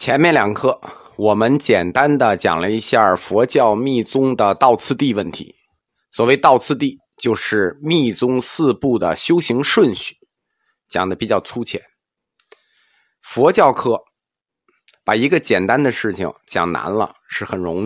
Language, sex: Chinese, male